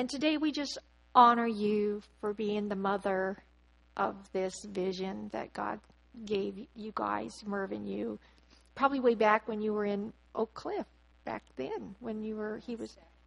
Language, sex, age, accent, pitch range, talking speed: English, female, 50-69, American, 185-235 Hz, 165 wpm